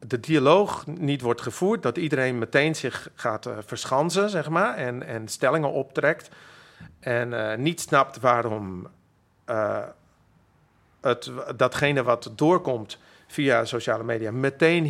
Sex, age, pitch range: male, 50-69, 115-145 Hz